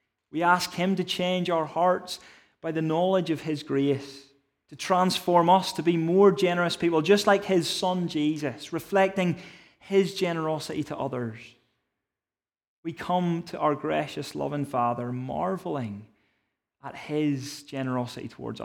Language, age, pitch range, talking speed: English, 30-49, 135-170 Hz, 140 wpm